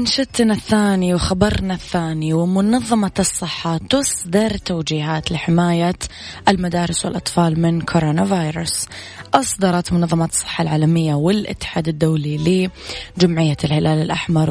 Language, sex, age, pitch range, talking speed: Arabic, female, 20-39, 165-195 Hz, 95 wpm